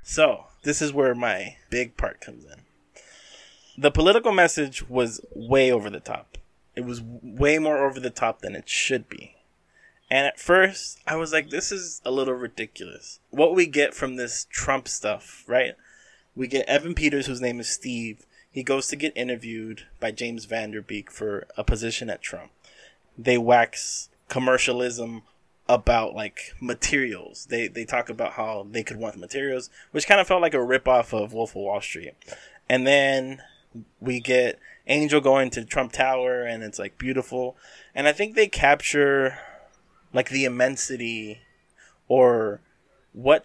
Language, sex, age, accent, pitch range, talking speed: English, male, 20-39, American, 115-140 Hz, 165 wpm